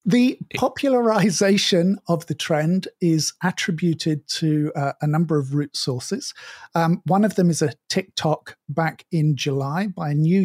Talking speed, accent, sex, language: 155 wpm, British, male, English